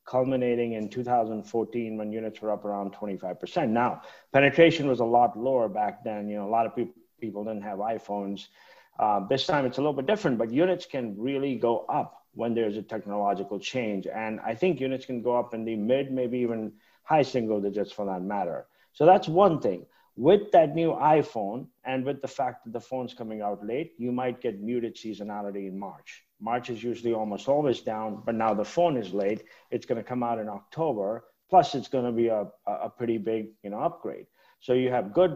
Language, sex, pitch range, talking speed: English, male, 110-130 Hz, 205 wpm